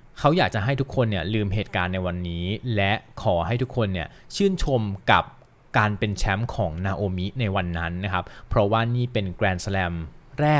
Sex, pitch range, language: male, 95-115 Hz, Thai